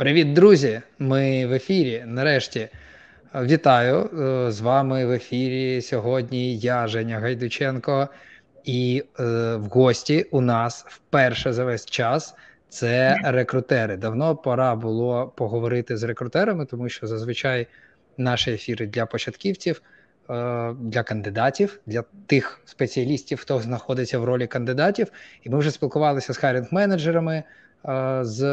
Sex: male